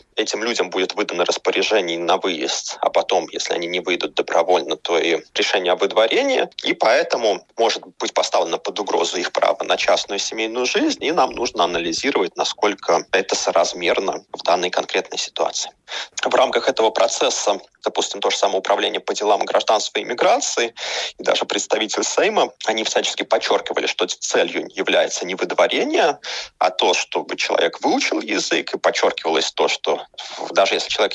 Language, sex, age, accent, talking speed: Russian, male, 30-49, native, 160 wpm